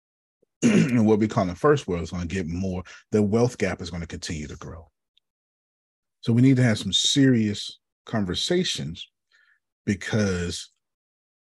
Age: 30-49